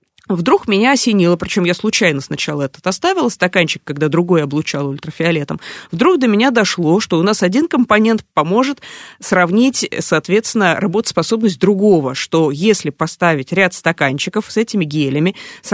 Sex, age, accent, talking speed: female, 20-39, native, 140 wpm